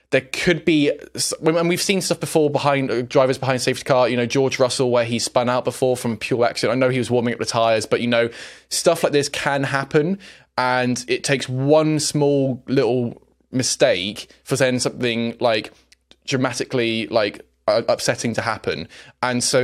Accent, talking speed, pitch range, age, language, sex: British, 185 wpm, 115-140 Hz, 20-39, English, male